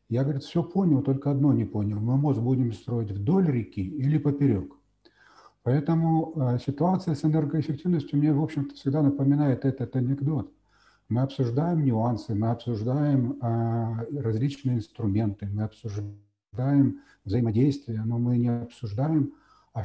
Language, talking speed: Ukrainian, 135 wpm